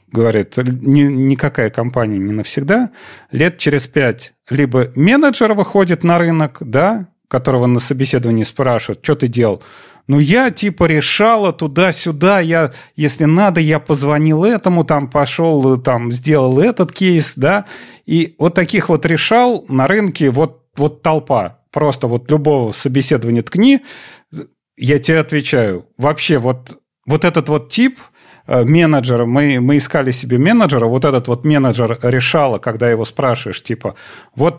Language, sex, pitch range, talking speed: Russian, male, 125-165 Hz, 140 wpm